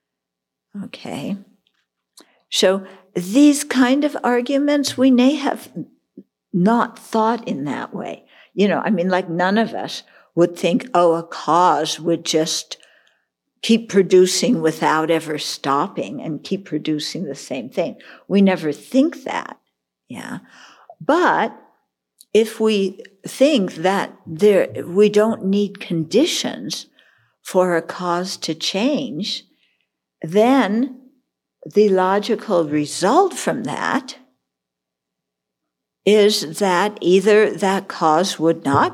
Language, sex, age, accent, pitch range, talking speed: English, female, 60-79, American, 165-230 Hz, 110 wpm